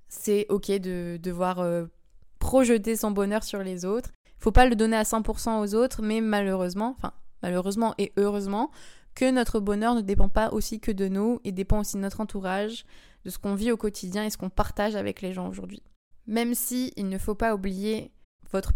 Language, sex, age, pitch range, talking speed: French, female, 20-39, 195-220 Hz, 210 wpm